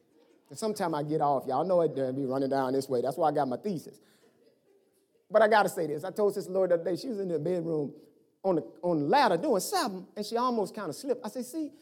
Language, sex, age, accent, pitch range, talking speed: English, male, 30-49, American, 180-295 Hz, 275 wpm